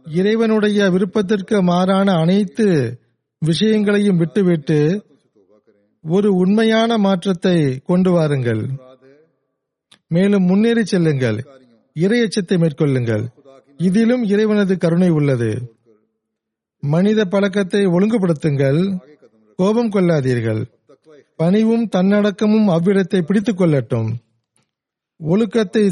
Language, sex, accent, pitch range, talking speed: Tamil, male, native, 145-205 Hz, 70 wpm